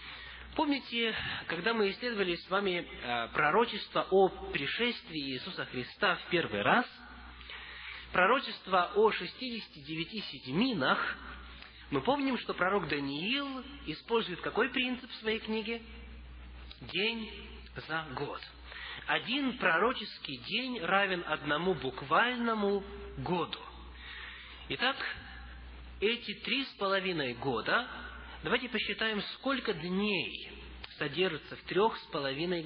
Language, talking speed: Russian, 100 wpm